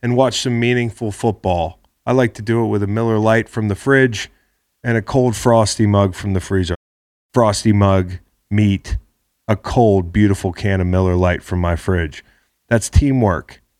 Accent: American